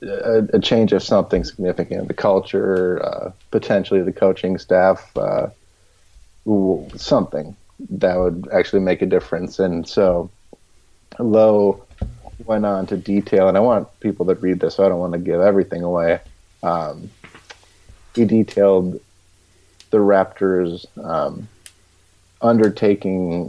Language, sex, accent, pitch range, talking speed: English, male, American, 90-100 Hz, 130 wpm